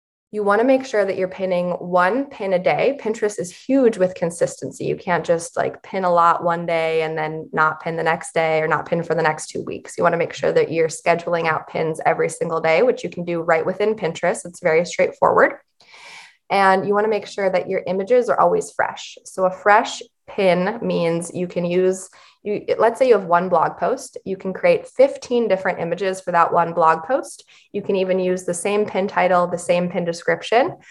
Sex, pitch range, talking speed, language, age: female, 170-210 Hz, 220 wpm, English, 20-39